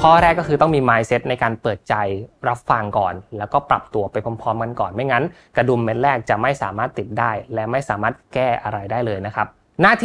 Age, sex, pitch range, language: 20-39, male, 110-140 Hz, Thai